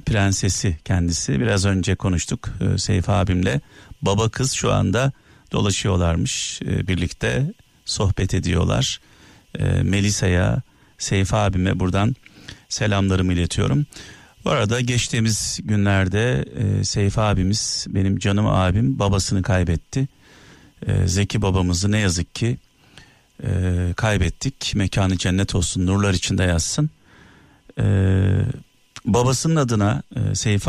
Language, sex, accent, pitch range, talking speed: Turkish, male, native, 95-125 Hz, 105 wpm